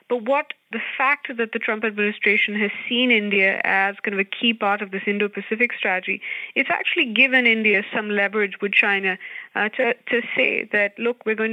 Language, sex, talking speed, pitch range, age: English, female, 195 wpm, 200-235 Hz, 30-49